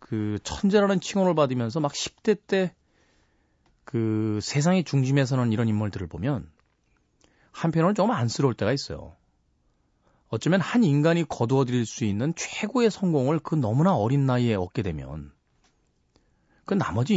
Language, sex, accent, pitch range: Korean, male, native, 100-155 Hz